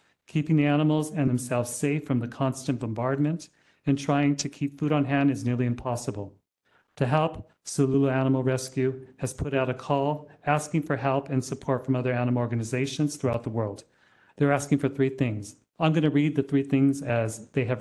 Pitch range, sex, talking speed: 130-145 Hz, male, 190 wpm